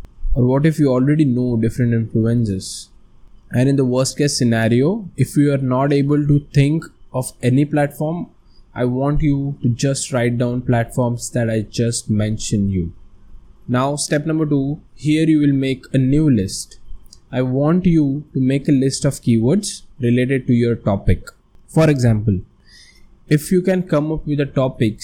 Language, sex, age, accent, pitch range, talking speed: English, male, 20-39, Indian, 115-145 Hz, 170 wpm